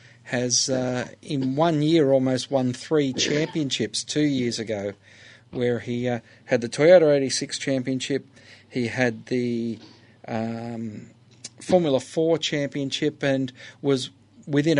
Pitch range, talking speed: 115-140 Hz, 120 wpm